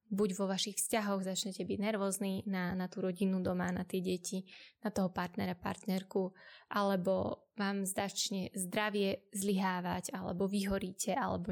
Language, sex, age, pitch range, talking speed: Slovak, female, 20-39, 195-225 Hz, 140 wpm